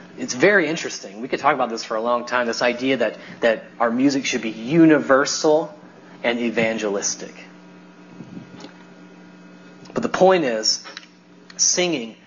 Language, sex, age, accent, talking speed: English, male, 30-49, American, 135 wpm